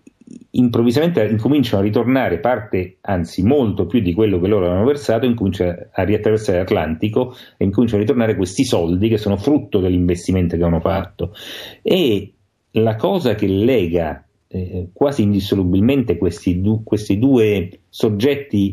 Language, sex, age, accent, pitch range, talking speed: Italian, male, 40-59, native, 90-110 Hz, 140 wpm